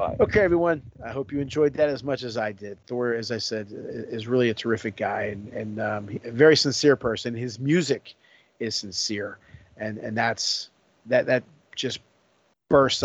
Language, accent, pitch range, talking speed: English, American, 115-135 Hz, 180 wpm